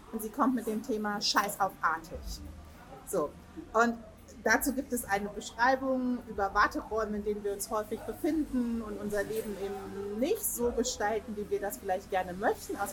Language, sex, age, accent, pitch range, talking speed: German, female, 30-49, German, 210-260 Hz, 175 wpm